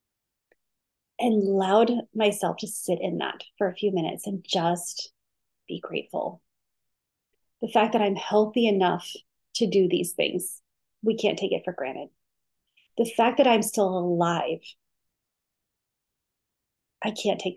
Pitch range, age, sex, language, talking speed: 190-230 Hz, 30-49, female, English, 135 wpm